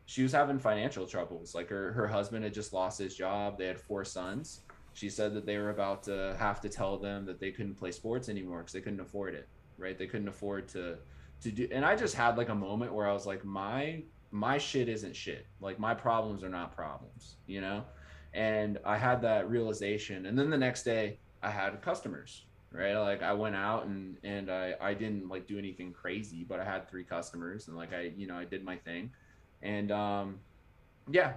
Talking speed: 220 wpm